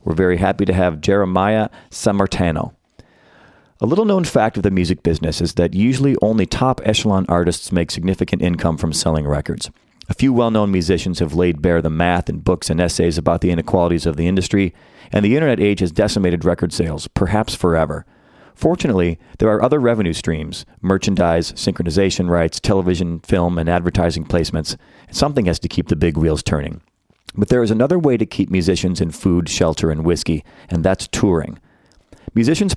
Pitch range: 85-105 Hz